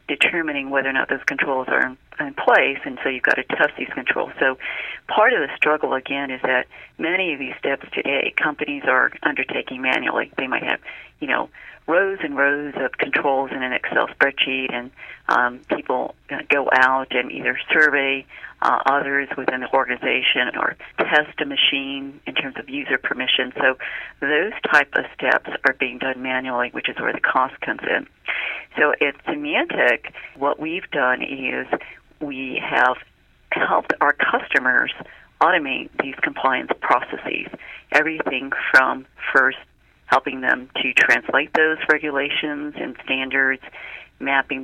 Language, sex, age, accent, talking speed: English, female, 40-59, American, 155 wpm